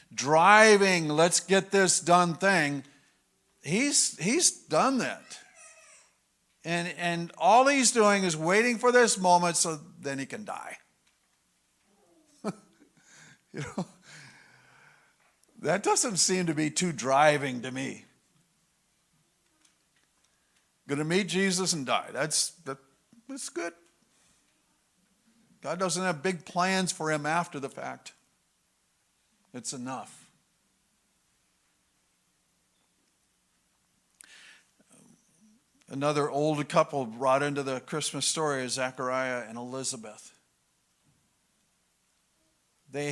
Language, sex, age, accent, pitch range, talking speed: English, male, 50-69, American, 135-190 Hz, 95 wpm